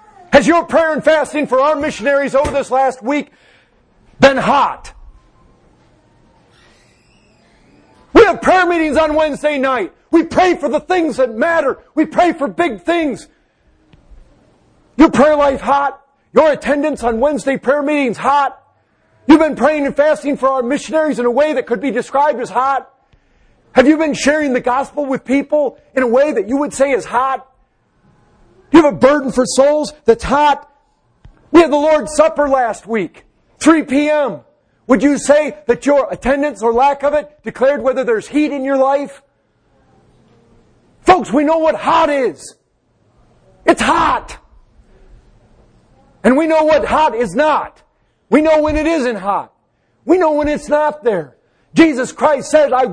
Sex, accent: male, American